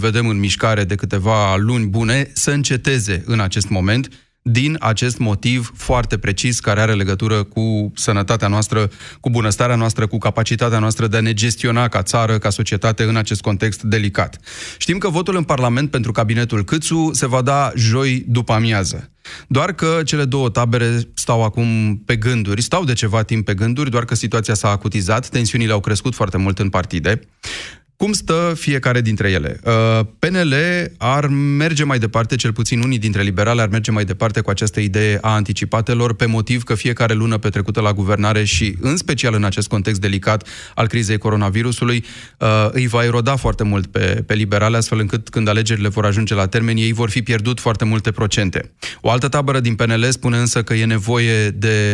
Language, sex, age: Romanian, male, 30-49